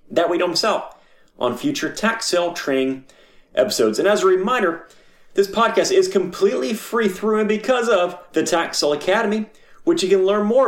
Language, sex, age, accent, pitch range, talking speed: English, male, 30-49, American, 165-250 Hz, 180 wpm